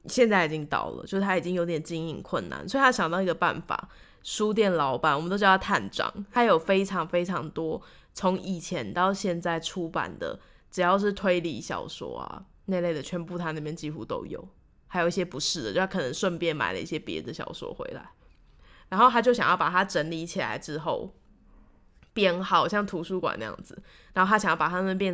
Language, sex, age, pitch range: Chinese, female, 10-29, 170-200 Hz